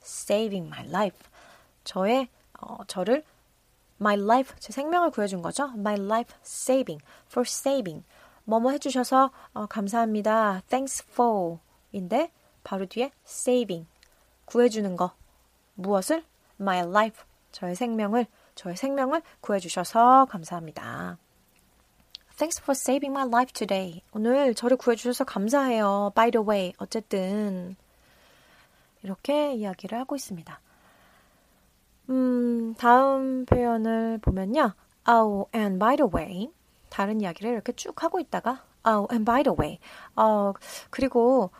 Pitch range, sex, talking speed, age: 200-260 Hz, female, 115 wpm, 30-49